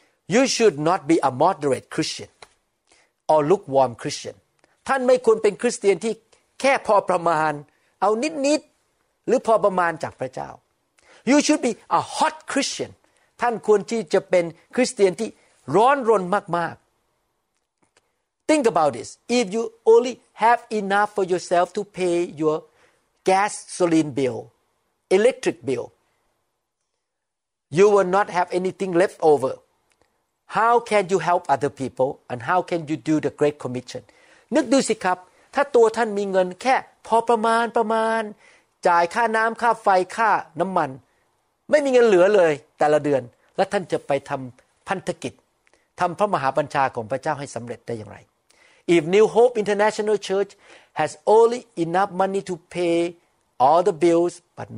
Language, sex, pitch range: Thai, male, 160-230 Hz